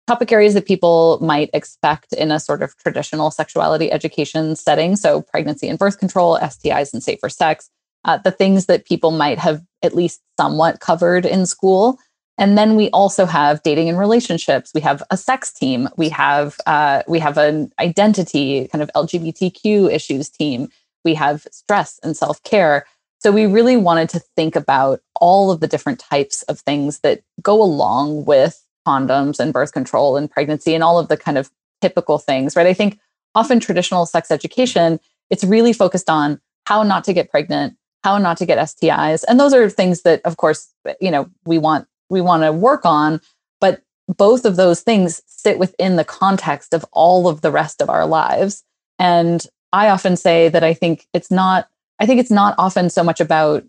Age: 20-39